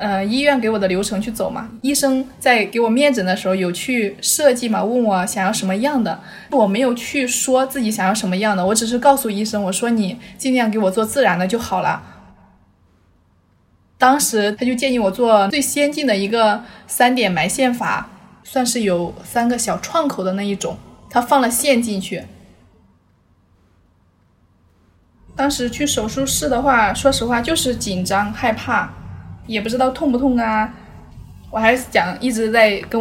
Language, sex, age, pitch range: Chinese, female, 20-39, 190-240 Hz